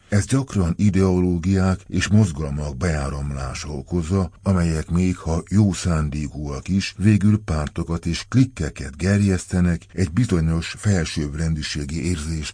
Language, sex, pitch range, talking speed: Hungarian, male, 80-100 Hz, 105 wpm